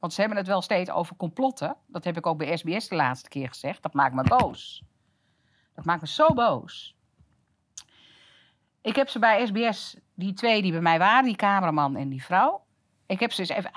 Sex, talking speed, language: female, 210 wpm, Dutch